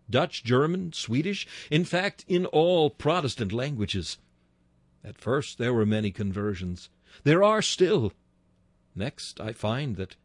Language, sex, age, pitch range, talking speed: English, male, 60-79, 100-150 Hz, 130 wpm